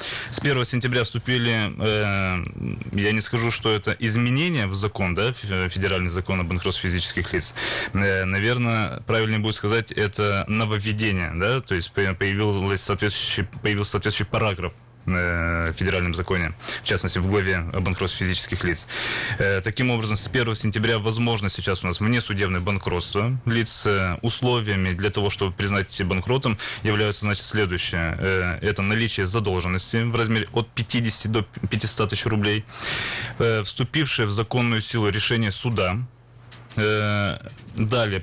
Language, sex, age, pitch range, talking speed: Russian, male, 20-39, 95-115 Hz, 140 wpm